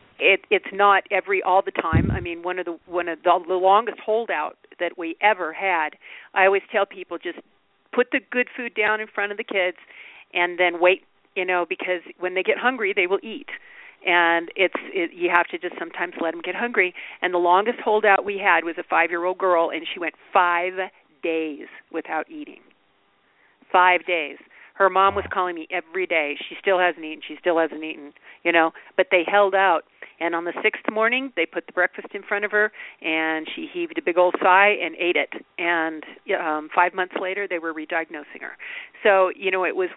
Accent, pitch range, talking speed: American, 170-205 Hz, 205 wpm